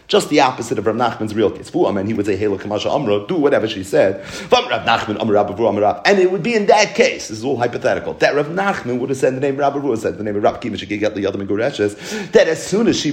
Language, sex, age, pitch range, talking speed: English, male, 40-59, 110-165 Hz, 250 wpm